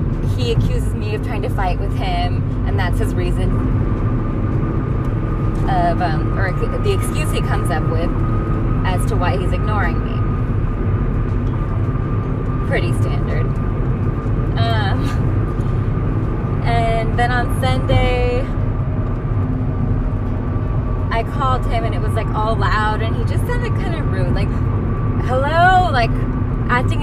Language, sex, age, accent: English, female, 20-39, American